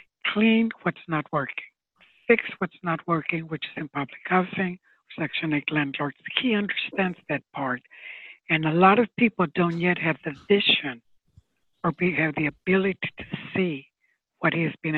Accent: American